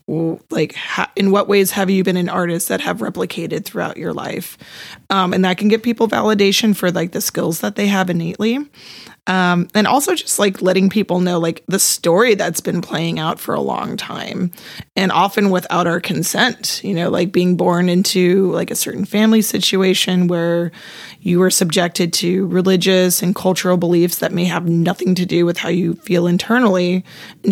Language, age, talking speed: English, 20-39, 190 wpm